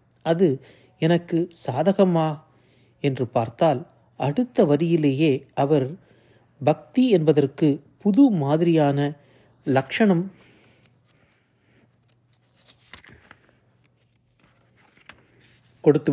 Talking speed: 50 wpm